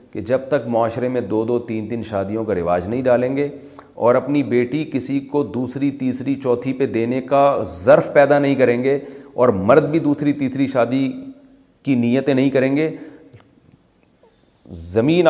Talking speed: 170 wpm